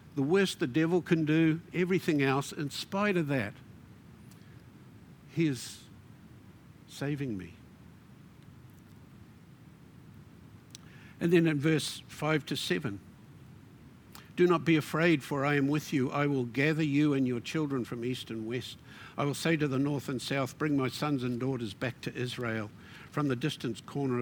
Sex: male